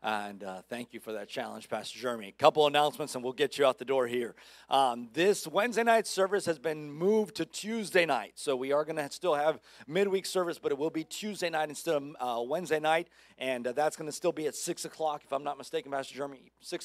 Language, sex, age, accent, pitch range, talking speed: English, male, 40-59, American, 130-165 Hz, 240 wpm